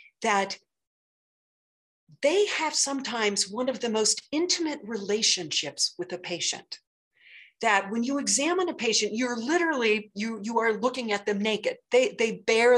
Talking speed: 145 wpm